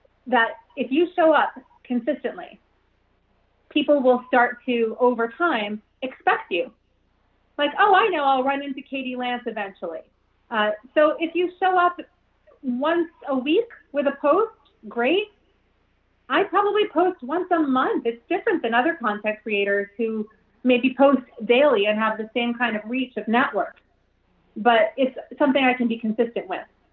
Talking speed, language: 155 wpm, English